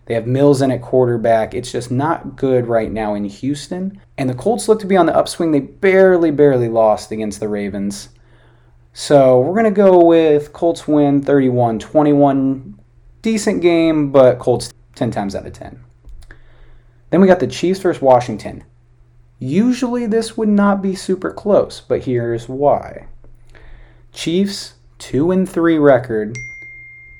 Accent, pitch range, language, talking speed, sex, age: American, 110-145 Hz, English, 150 wpm, male, 20-39